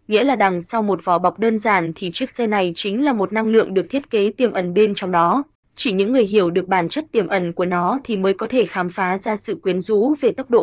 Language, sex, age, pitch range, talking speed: Vietnamese, female, 20-39, 190-225 Hz, 280 wpm